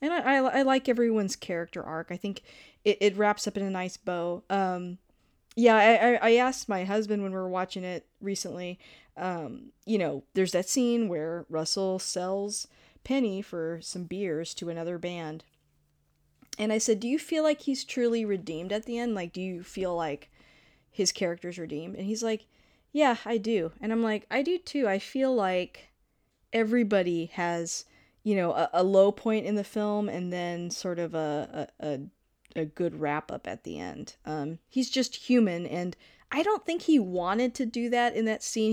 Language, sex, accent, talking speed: English, female, American, 190 wpm